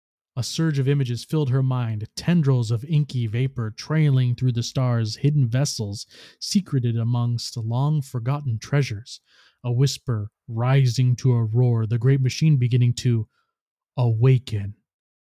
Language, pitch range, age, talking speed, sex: English, 115-140 Hz, 20-39, 130 wpm, male